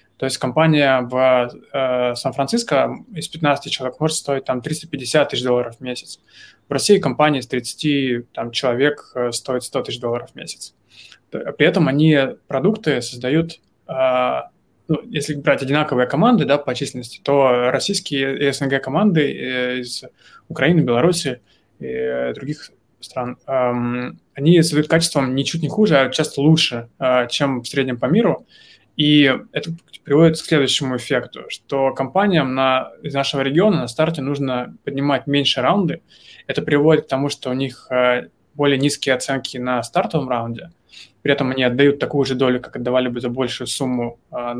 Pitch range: 125-150 Hz